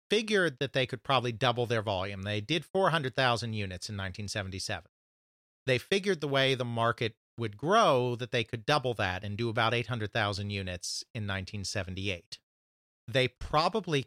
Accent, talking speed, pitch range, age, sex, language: American, 155 wpm, 105-130 Hz, 40-59, male, English